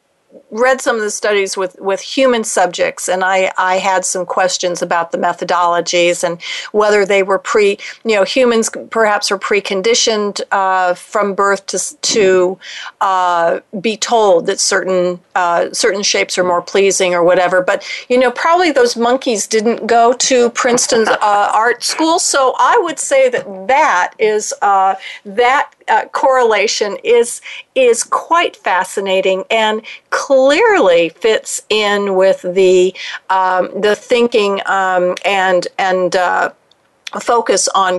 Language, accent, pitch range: English, American, 185-250 Hz